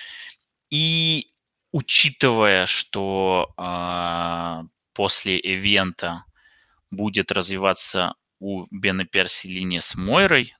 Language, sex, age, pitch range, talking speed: Russian, male, 20-39, 90-105 Hz, 75 wpm